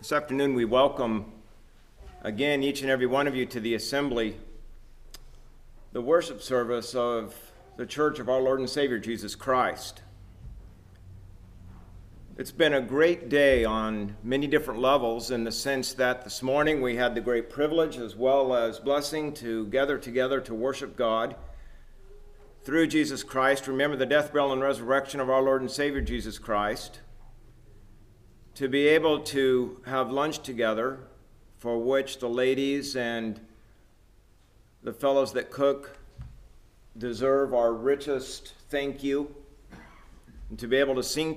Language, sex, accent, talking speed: English, male, American, 145 wpm